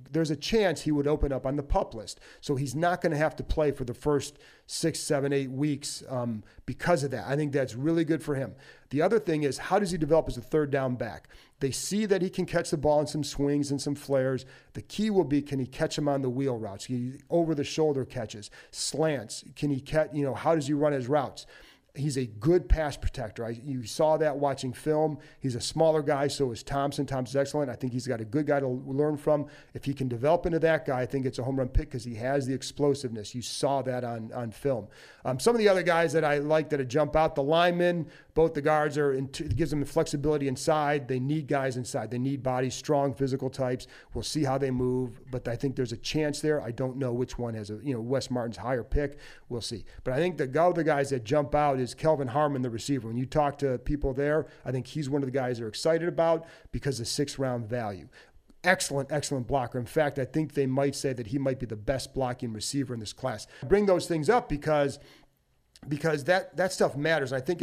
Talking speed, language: 245 wpm, English